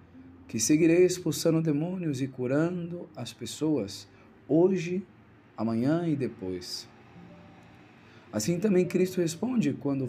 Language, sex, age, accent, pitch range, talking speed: Portuguese, male, 40-59, Brazilian, 110-150 Hz, 100 wpm